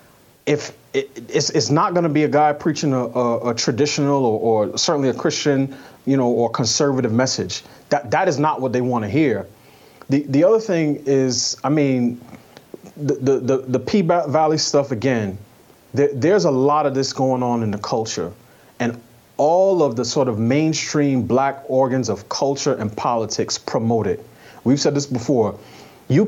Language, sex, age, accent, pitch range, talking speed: English, male, 30-49, American, 120-150 Hz, 185 wpm